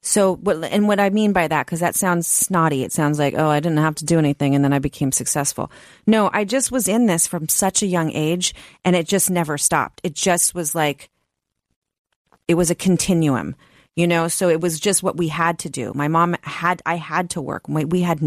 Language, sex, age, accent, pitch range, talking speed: English, female, 30-49, American, 145-180 Hz, 230 wpm